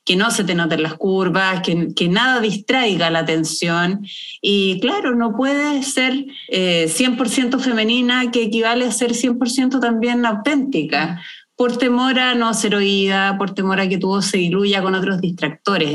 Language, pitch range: Spanish, 175-245 Hz